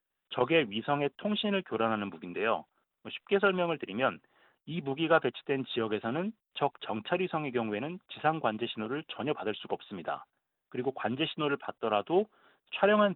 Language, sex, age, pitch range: Korean, male, 30-49, 120-165 Hz